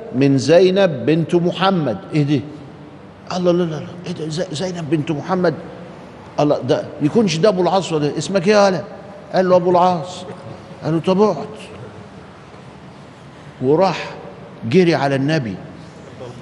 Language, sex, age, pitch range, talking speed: Arabic, male, 50-69, 140-175 Hz, 125 wpm